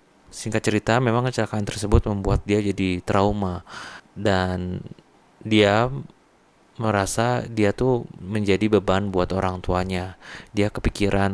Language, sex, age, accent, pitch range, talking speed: Indonesian, male, 20-39, native, 95-110 Hz, 110 wpm